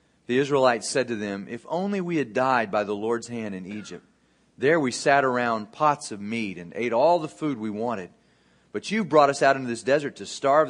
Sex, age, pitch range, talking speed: male, 40-59, 105-140 Hz, 225 wpm